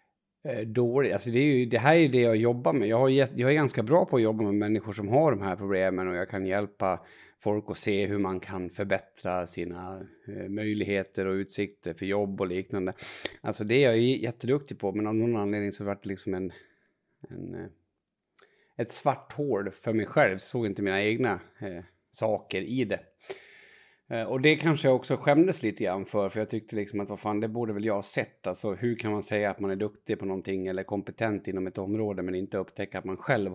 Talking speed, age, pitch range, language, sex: 220 wpm, 30-49, 100-125 Hz, Swedish, male